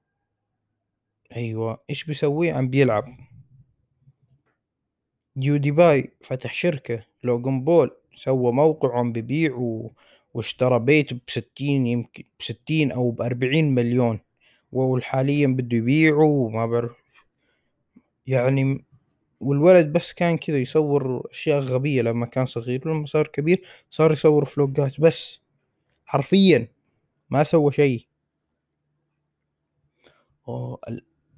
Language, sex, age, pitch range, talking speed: Arabic, male, 20-39, 120-145 Hz, 100 wpm